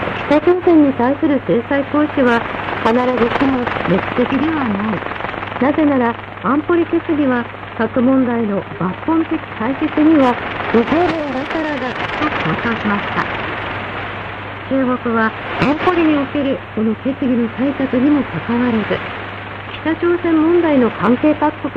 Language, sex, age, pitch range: Korean, female, 50-69, 230-295 Hz